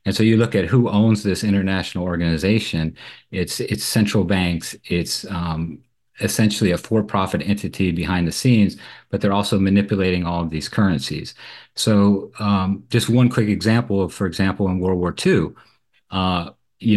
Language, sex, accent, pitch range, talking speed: English, male, American, 90-110 Hz, 165 wpm